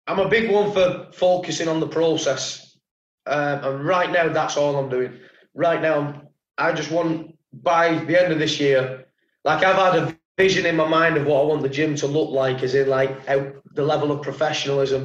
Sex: male